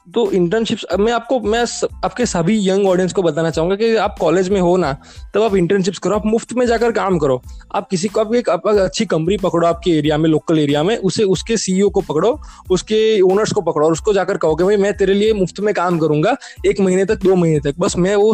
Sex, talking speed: male, 235 wpm